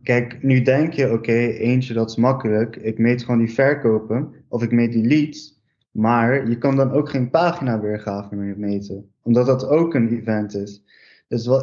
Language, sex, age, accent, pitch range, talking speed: Dutch, male, 20-39, Dutch, 110-135 Hz, 180 wpm